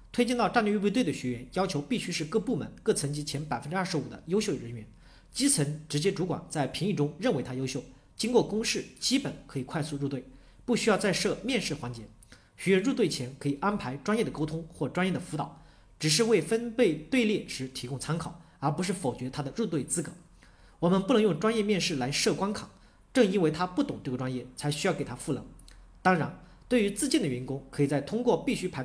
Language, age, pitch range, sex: Chinese, 40-59, 135-205 Hz, male